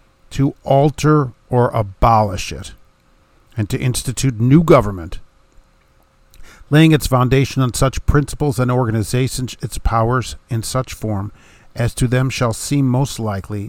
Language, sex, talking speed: English, male, 130 wpm